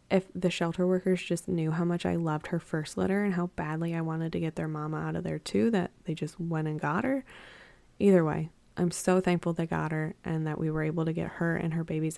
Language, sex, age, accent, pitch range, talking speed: English, female, 20-39, American, 170-200 Hz, 255 wpm